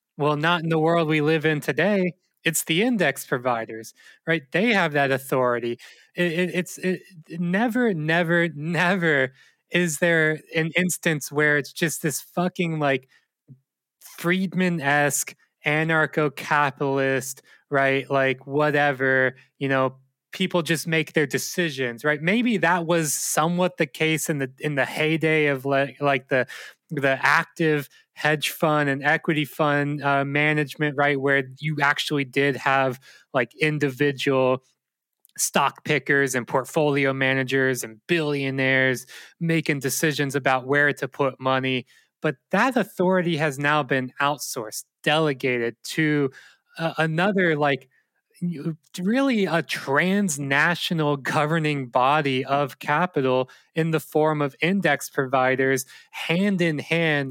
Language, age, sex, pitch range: English, 20-39, male, 135-165 Hz